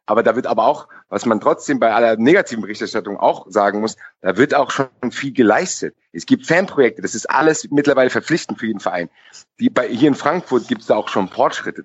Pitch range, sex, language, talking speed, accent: 110-155 Hz, male, German, 215 wpm, German